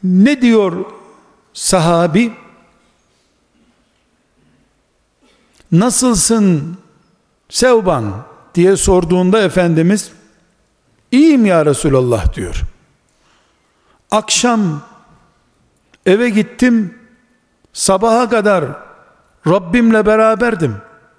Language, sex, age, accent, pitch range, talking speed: Turkish, male, 60-79, native, 165-235 Hz, 55 wpm